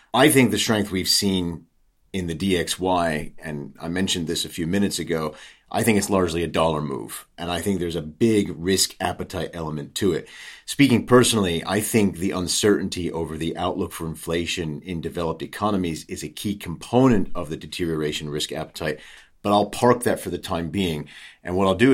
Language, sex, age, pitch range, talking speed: English, male, 40-59, 80-100 Hz, 190 wpm